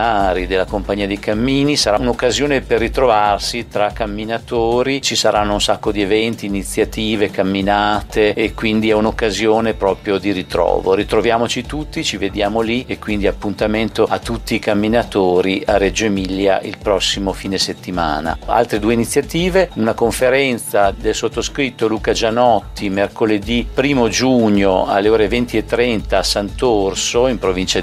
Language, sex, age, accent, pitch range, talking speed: English, male, 50-69, Italian, 100-115 Hz, 140 wpm